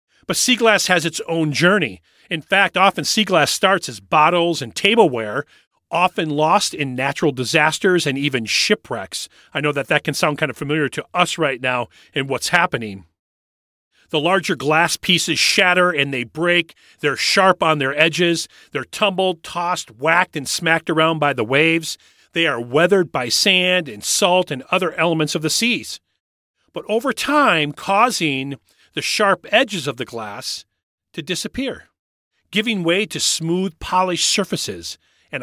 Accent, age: American, 40-59